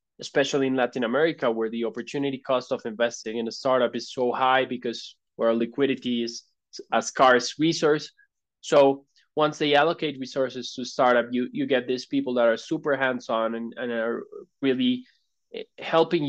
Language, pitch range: English, 120-145 Hz